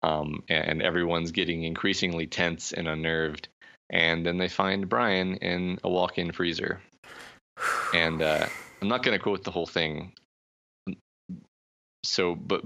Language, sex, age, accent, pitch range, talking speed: English, male, 20-39, American, 80-90 Hz, 135 wpm